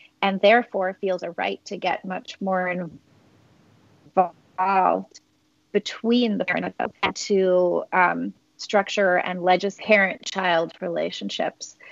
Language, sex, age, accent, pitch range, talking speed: English, female, 30-49, American, 180-210 Hz, 105 wpm